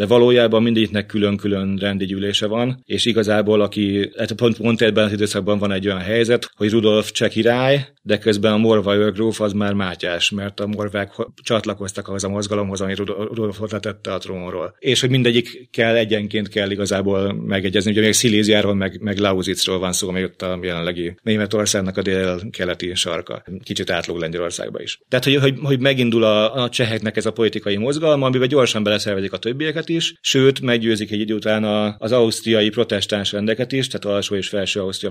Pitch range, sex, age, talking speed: 100-115 Hz, male, 30-49, 180 wpm